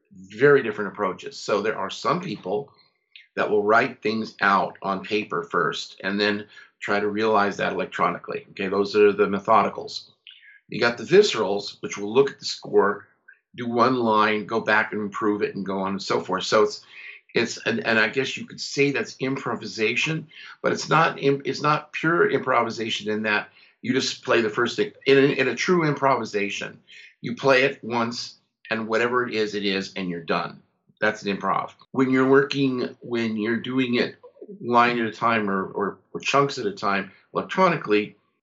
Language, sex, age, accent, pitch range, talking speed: English, male, 50-69, American, 105-135 Hz, 190 wpm